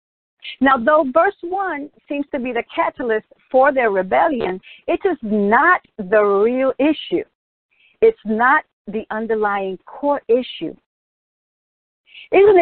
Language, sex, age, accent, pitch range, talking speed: English, female, 50-69, American, 195-275 Hz, 120 wpm